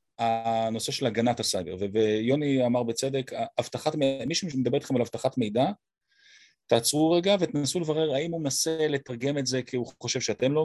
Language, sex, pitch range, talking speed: Hebrew, male, 120-160 Hz, 170 wpm